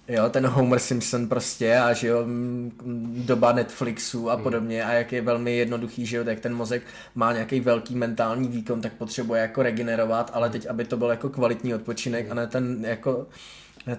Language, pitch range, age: Czech, 120-130 Hz, 20-39